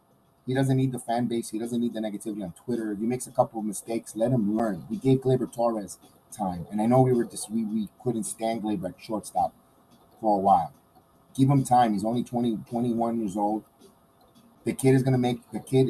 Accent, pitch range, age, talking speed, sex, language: American, 105-125 Hz, 30-49, 225 wpm, male, English